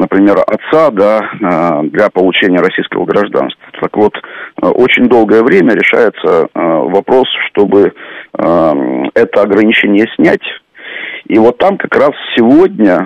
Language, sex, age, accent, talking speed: Russian, male, 40-59, native, 105 wpm